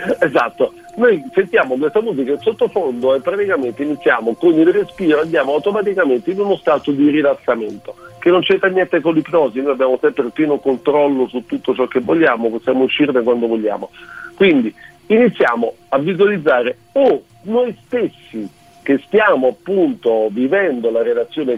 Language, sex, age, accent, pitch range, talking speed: Italian, male, 50-69, native, 130-215 Hz, 150 wpm